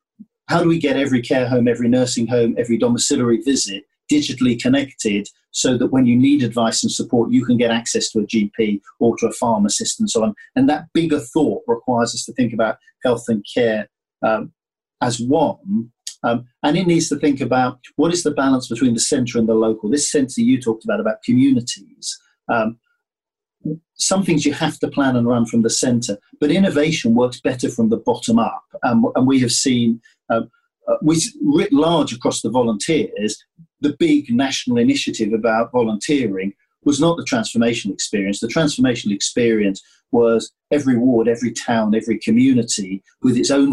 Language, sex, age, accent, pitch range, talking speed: English, male, 40-59, British, 115-190 Hz, 180 wpm